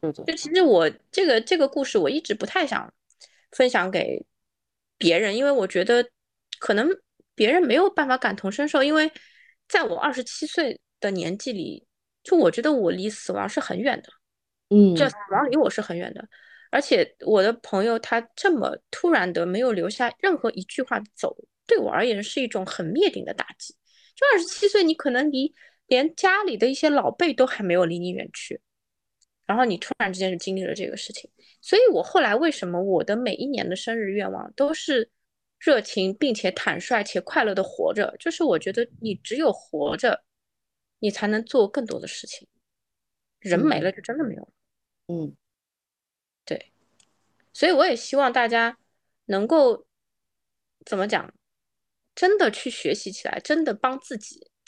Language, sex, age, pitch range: Chinese, female, 20-39, 205-320 Hz